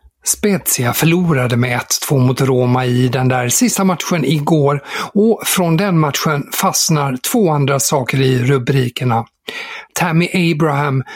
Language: Swedish